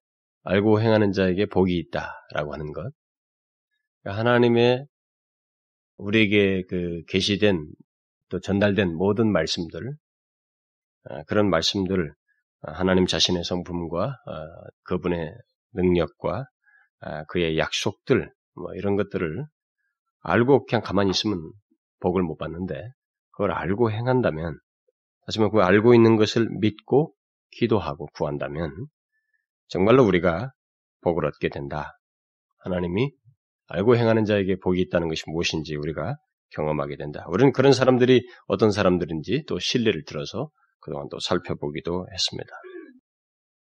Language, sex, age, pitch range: Korean, male, 30-49, 90-120 Hz